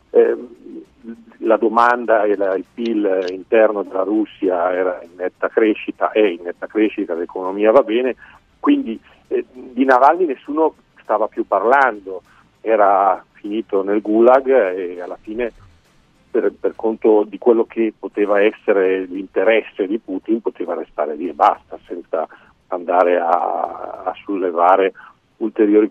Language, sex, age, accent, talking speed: Italian, male, 50-69, native, 125 wpm